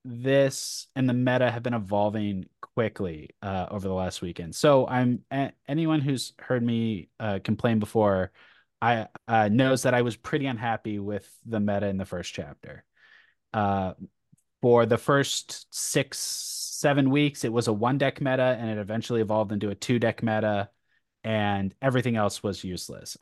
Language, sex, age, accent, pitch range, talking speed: English, male, 20-39, American, 105-125 Hz, 165 wpm